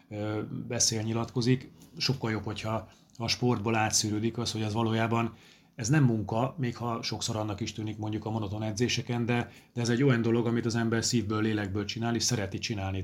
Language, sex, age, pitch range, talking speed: Hungarian, male, 30-49, 105-115 Hz, 185 wpm